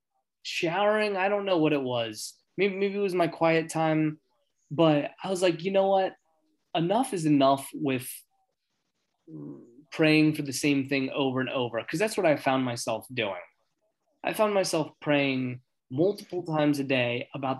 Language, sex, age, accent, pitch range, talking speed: English, male, 20-39, American, 135-175 Hz, 165 wpm